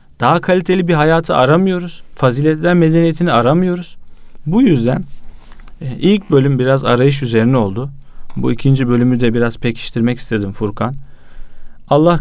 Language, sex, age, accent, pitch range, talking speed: Turkish, male, 40-59, native, 115-165 Hz, 125 wpm